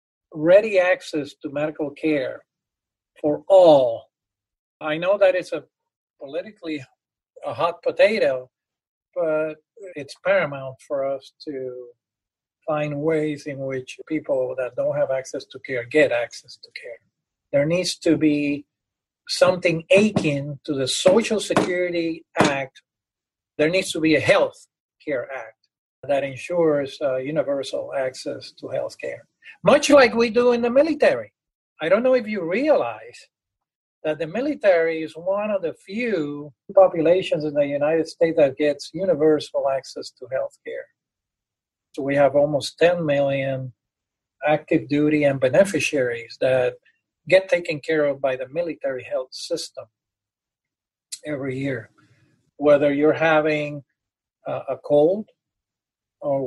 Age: 50-69